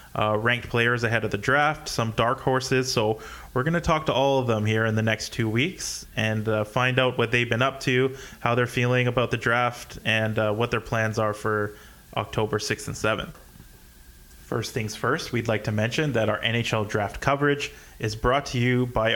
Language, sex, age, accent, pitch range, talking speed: English, male, 20-39, American, 110-130 Hz, 210 wpm